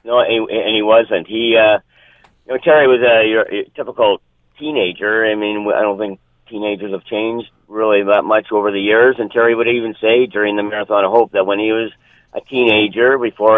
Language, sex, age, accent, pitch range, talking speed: English, male, 50-69, American, 95-110 Hz, 200 wpm